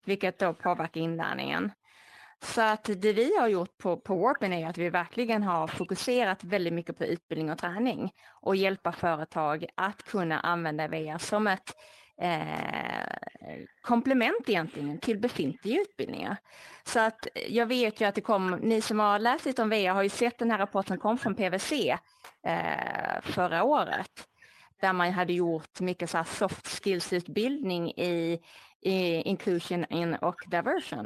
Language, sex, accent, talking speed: Swedish, female, native, 160 wpm